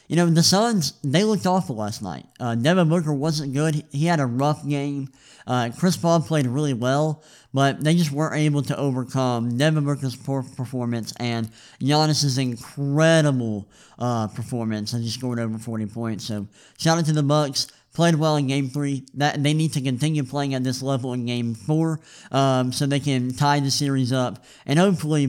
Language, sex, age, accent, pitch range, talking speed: English, male, 50-69, American, 130-155 Hz, 190 wpm